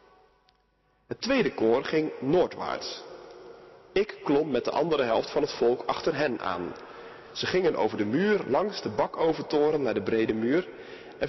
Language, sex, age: Dutch, male, 40-59